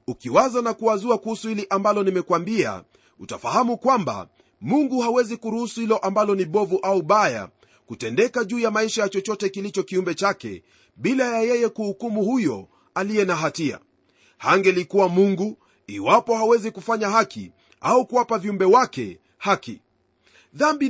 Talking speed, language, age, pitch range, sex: 130 wpm, Swahili, 40-59, 190-235 Hz, male